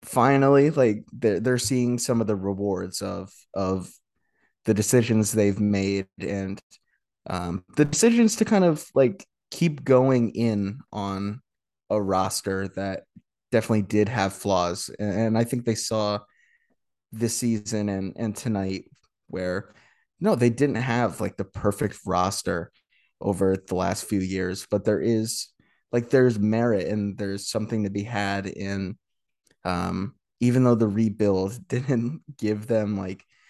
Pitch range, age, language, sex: 95-115 Hz, 20-39, English, male